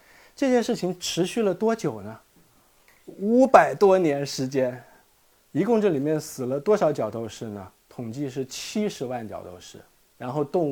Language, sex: Chinese, male